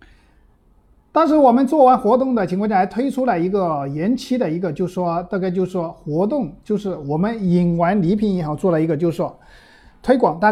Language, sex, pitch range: Chinese, male, 150-215 Hz